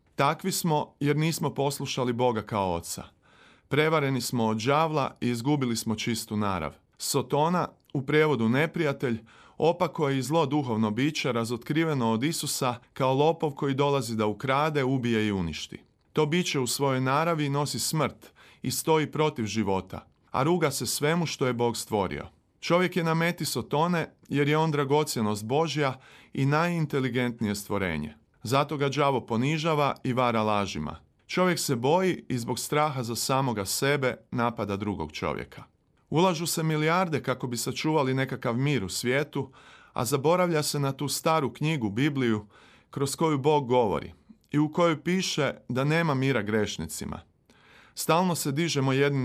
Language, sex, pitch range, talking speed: Croatian, male, 115-155 Hz, 150 wpm